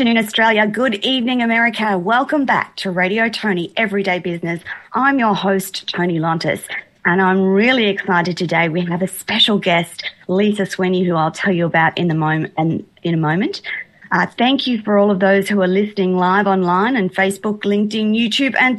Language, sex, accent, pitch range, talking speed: English, female, Australian, 180-220 Hz, 170 wpm